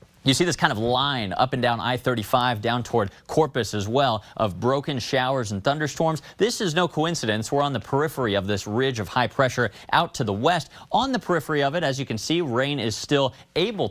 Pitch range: 110-145 Hz